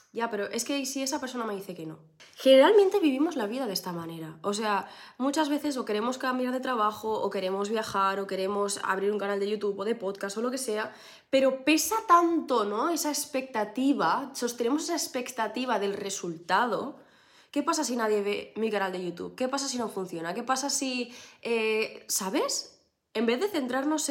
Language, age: Spanish, 20-39